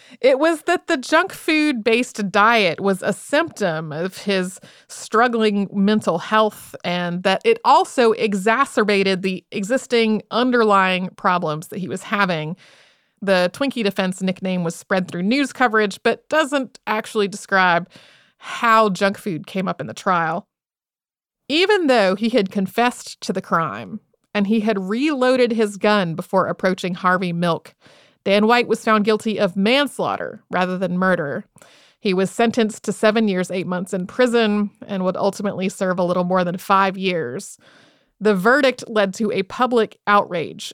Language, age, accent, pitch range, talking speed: English, 30-49, American, 190-225 Hz, 155 wpm